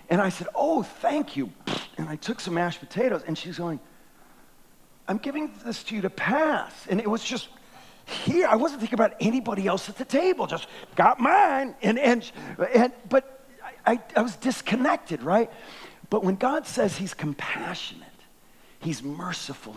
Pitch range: 160-240 Hz